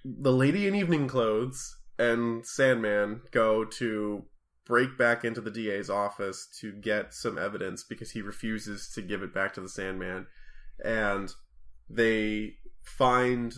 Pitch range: 100-120 Hz